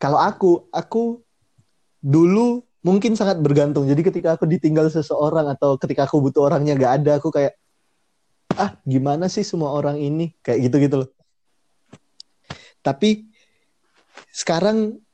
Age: 20-39